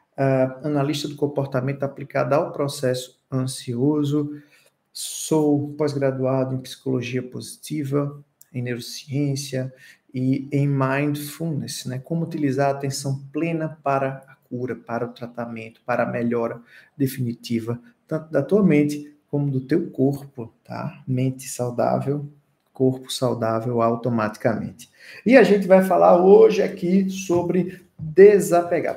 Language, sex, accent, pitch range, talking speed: Portuguese, male, Brazilian, 130-175 Hz, 120 wpm